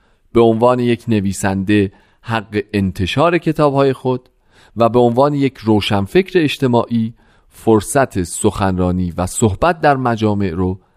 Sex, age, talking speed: male, 40-59, 115 wpm